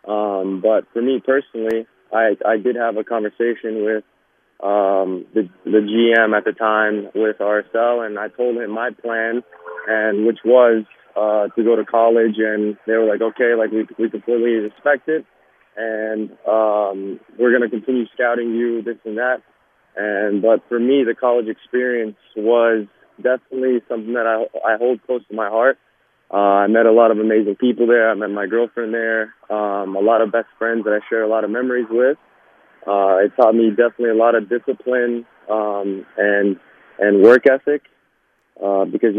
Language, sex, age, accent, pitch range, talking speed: English, male, 20-39, American, 105-120 Hz, 180 wpm